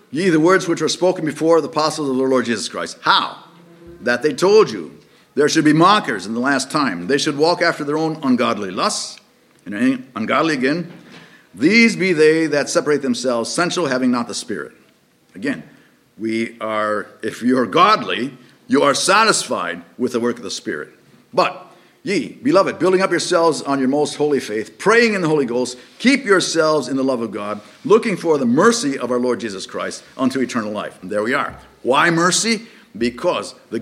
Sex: male